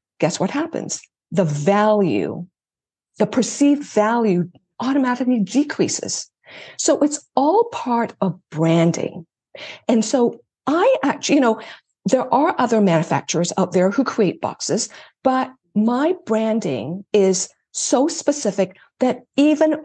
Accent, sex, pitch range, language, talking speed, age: American, female, 185-250 Hz, English, 120 wpm, 50-69